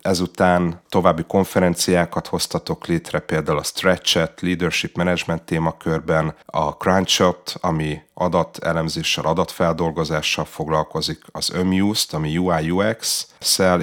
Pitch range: 80-90 Hz